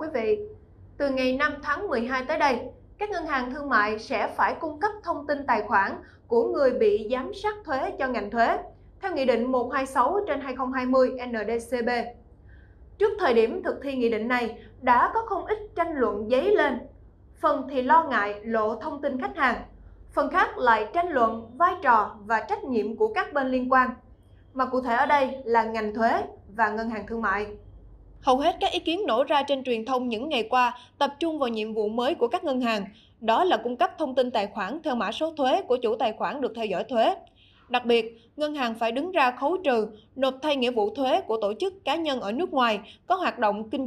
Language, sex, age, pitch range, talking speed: Vietnamese, female, 20-39, 230-320 Hz, 220 wpm